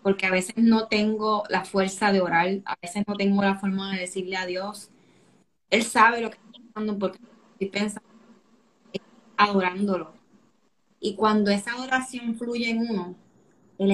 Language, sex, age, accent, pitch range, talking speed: Spanish, female, 20-39, American, 205-250 Hz, 155 wpm